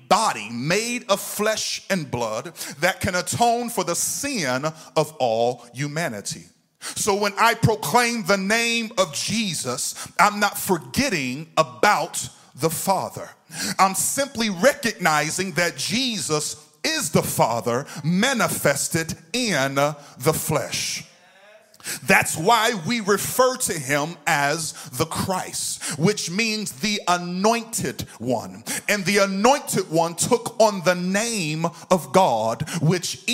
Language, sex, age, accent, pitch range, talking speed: English, male, 40-59, American, 155-210 Hz, 120 wpm